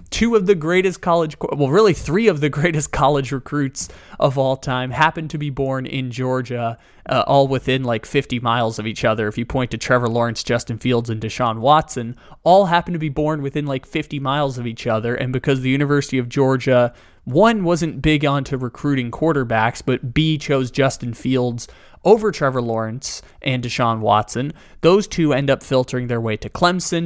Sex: male